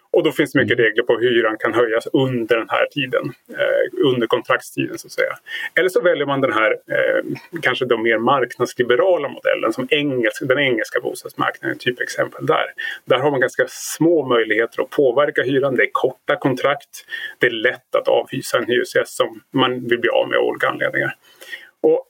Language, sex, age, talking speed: Swedish, male, 30-49, 200 wpm